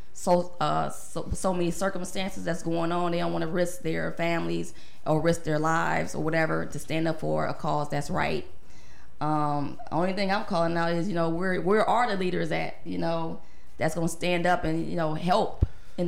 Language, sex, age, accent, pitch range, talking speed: English, female, 20-39, American, 160-180 Hz, 210 wpm